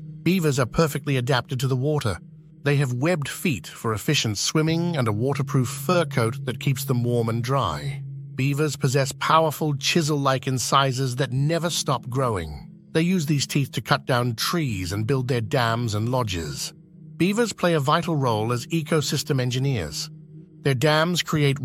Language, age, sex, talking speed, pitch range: English, 50-69, male, 165 wpm, 130-160 Hz